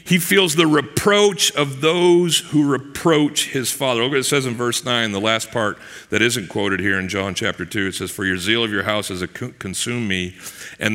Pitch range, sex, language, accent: 95-145 Hz, male, English, American